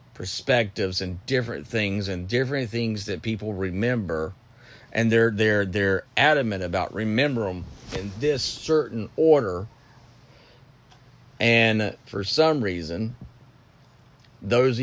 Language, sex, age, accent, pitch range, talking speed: English, male, 40-59, American, 110-130 Hz, 110 wpm